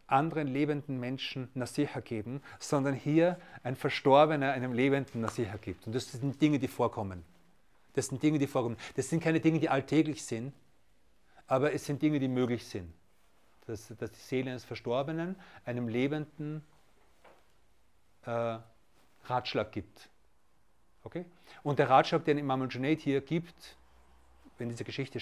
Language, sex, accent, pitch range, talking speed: German, male, German, 120-155 Hz, 145 wpm